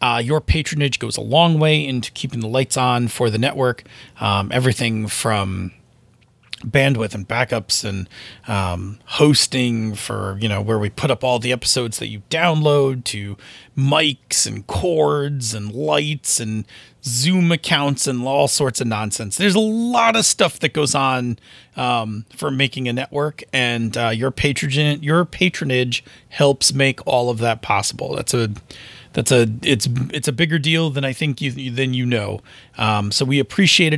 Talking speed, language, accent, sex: 165 wpm, English, American, male